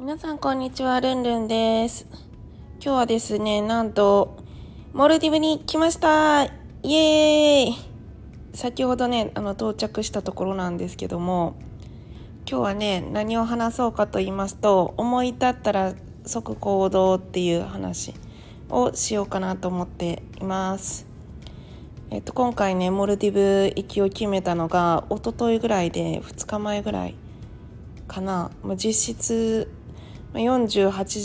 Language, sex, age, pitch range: Japanese, female, 20-39, 170-220 Hz